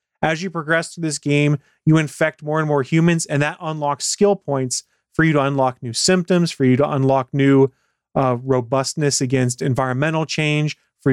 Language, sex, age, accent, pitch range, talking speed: English, male, 30-49, American, 140-175 Hz, 185 wpm